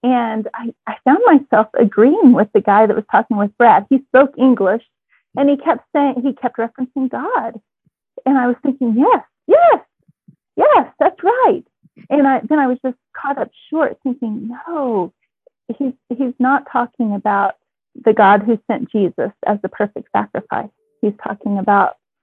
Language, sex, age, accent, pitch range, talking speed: English, female, 30-49, American, 210-260 Hz, 165 wpm